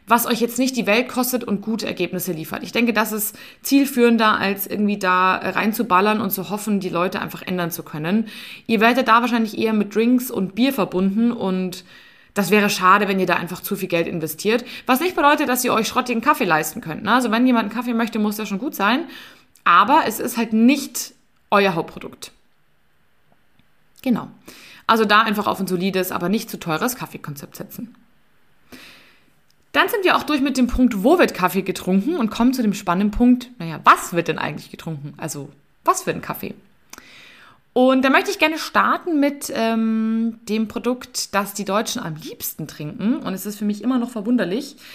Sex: female